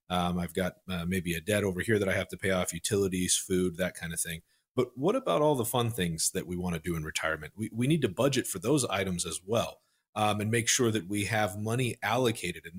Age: 40-59